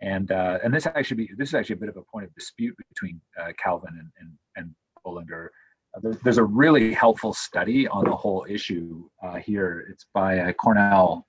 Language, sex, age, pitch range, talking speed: English, male, 40-59, 95-125 Hz, 215 wpm